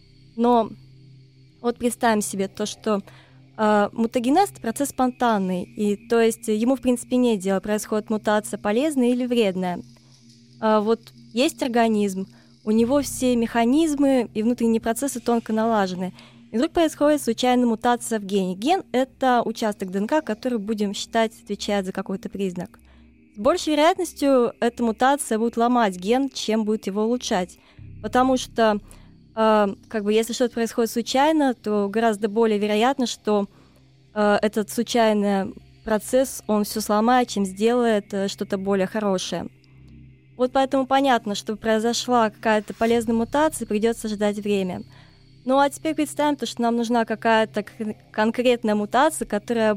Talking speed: 140 wpm